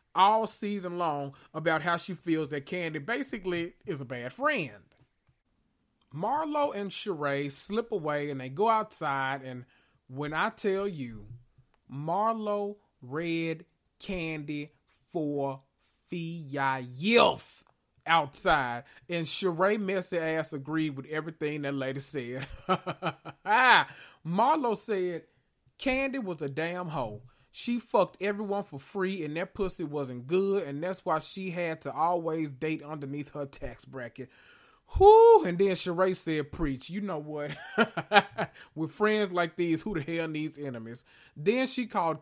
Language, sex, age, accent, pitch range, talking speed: English, male, 30-49, American, 140-185 Hz, 135 wpm